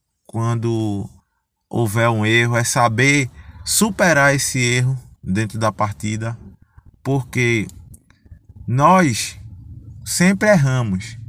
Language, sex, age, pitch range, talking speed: Portuguese, male, 20-39, 110-145 Hz, 85 wpm